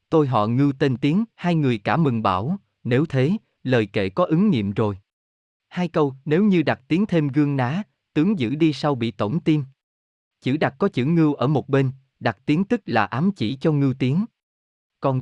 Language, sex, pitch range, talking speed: Vietnamese, male, 115-165 Hz, 205 wpm